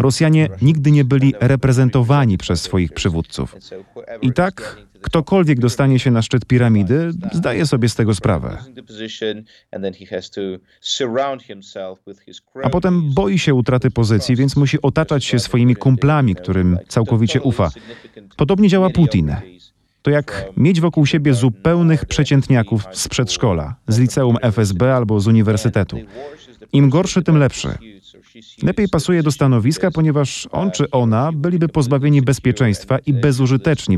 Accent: native